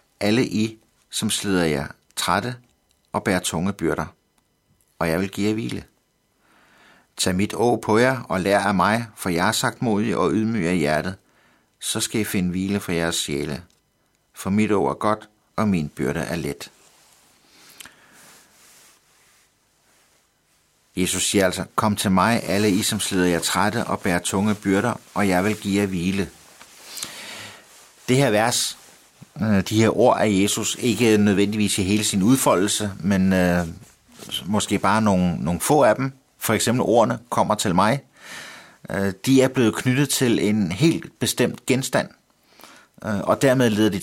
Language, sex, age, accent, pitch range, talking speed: Danish, male, 60-79, native, 90-110 Hz, 160 wpm